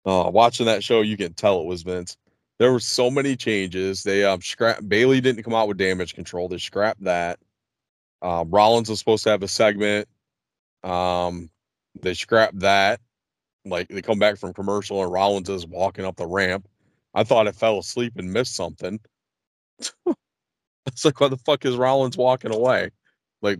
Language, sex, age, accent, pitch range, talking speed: English, male, 30-49, American, 90-110 Hz, 180 wpm